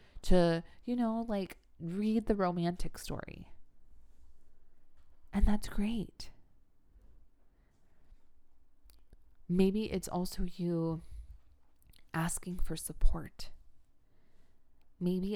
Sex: female